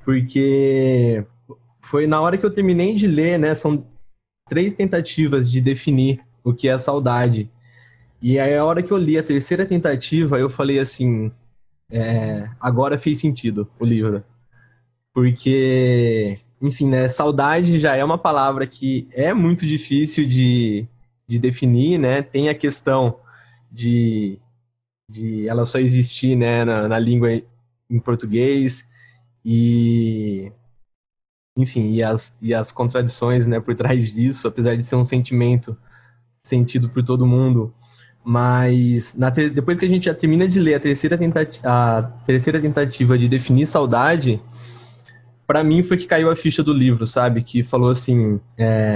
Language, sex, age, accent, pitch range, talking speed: Portuguese, male, 20-39, Brazilian, 120-145 Hz, 150 wpm